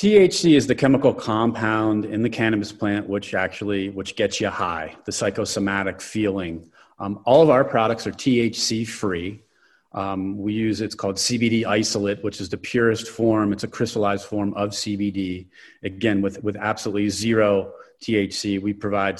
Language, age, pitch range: English, 30-49, 100-115 Hz